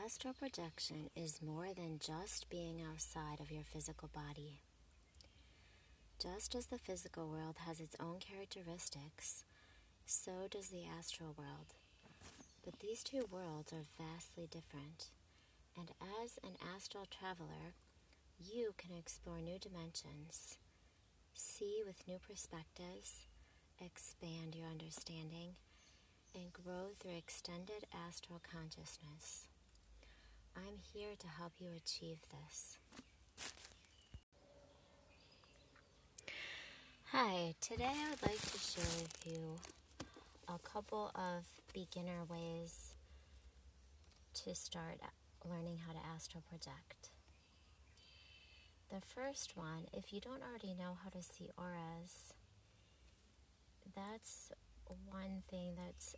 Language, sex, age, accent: English, female, 30-49, American